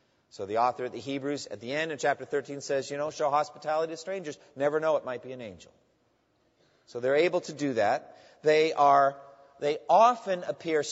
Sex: male